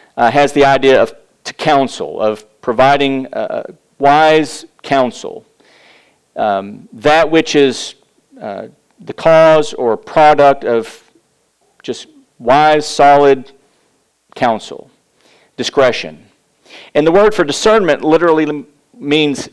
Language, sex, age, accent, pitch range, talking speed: English, male, 40-59, American, 135-170 Hz, 105 wpm